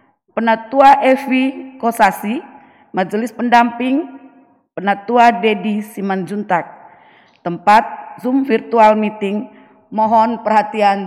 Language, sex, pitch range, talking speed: Indonesian, female, 210-255 Hz, 75 wpm